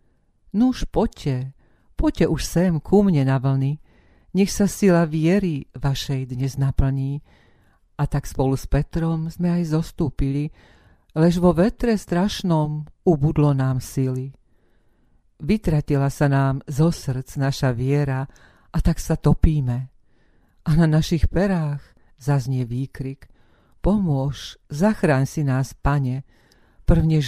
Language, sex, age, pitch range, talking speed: Slovak, female, 50-69, 135-165 Hz, 120 wpm